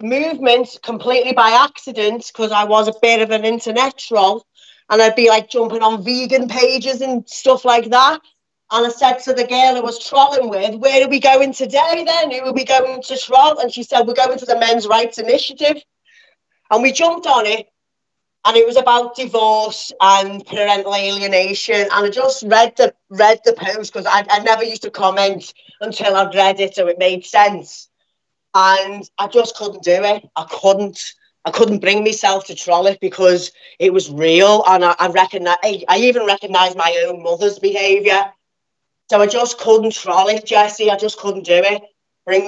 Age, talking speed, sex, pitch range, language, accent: 30-49, 190 wpm, female, 195-250 Hz, English, British